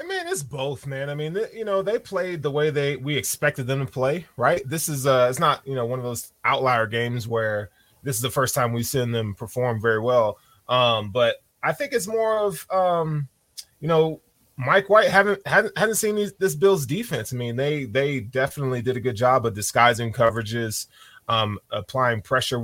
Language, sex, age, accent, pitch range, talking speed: English, male, 20-39, American, 120-155 Hz, 210 wpm